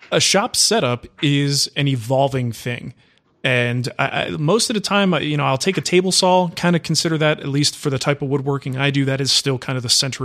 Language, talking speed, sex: English, 240 wpm, male